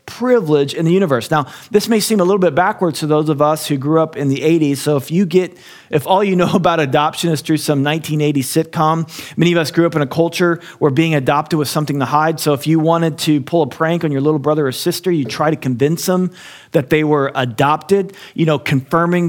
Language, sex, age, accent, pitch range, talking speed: English, male, 40-59, American, 145-175 Hz, 245 wpm